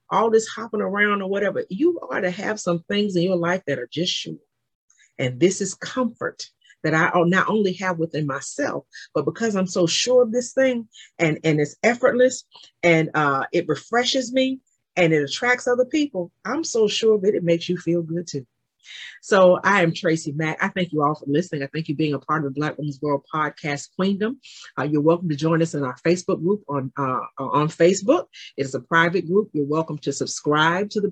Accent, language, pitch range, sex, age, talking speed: American, English, 150-200 Hz, female, 40-59, 210 wpm